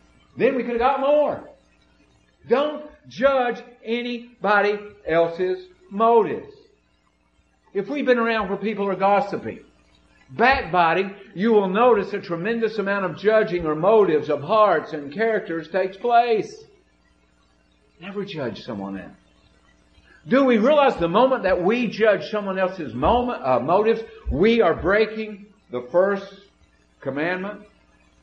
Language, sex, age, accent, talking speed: English, male, 50-69, American, 125 wpm